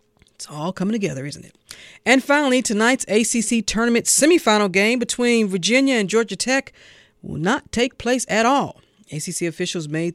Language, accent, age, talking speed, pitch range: English, American, 40-59, 160 wpm, 150-205 Hz